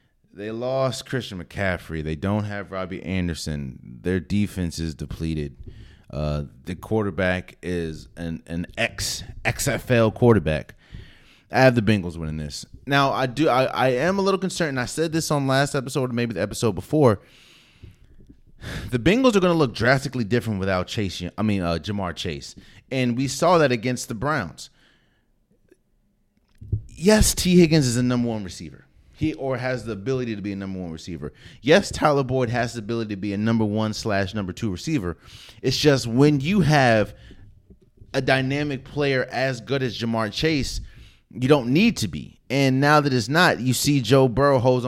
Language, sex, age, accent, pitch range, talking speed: English, male, 30-49, American, 95-135 Hz, 175 wpm